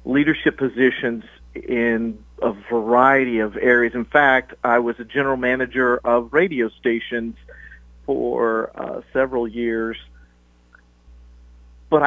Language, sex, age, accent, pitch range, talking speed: English, male, 50-69, American, 105-135 Hz, 110 wpm